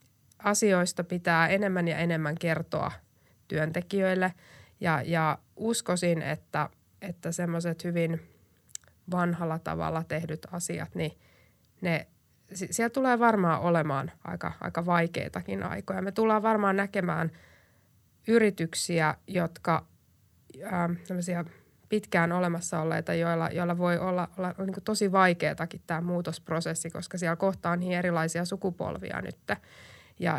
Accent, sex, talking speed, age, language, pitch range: native, female, 105 wpm, 20-39, Finnish, 165-190 Hz